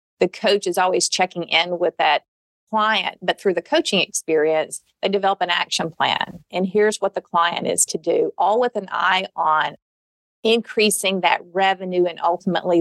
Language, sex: English, female